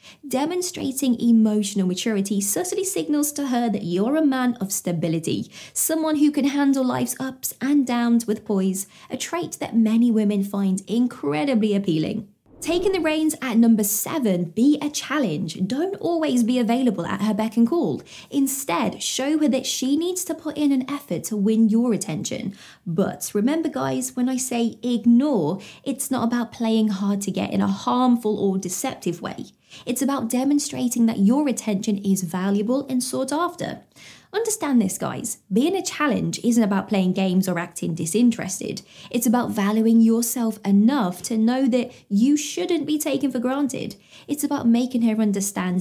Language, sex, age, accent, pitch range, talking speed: English, female, 20-39, British, 200-275 Hz, 165 wpm